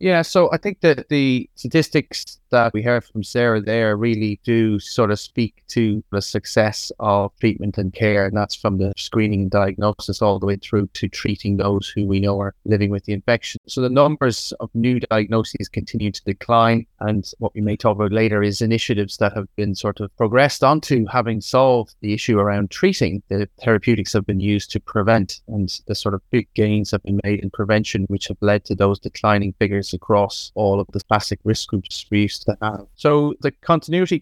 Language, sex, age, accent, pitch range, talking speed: English, male, 30-49, British, 100-120 Hz, 205 wpm